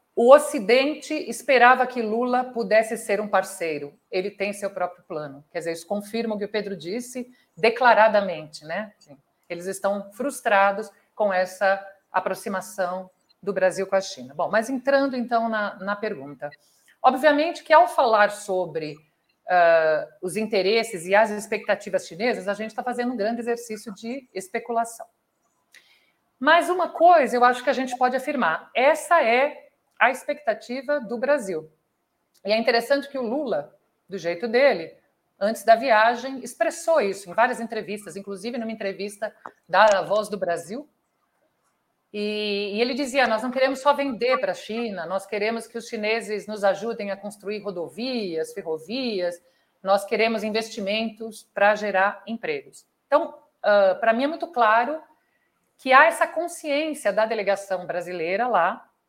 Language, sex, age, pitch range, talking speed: Portuguese, female, 50-69, 195-255 Hz, 145 wpm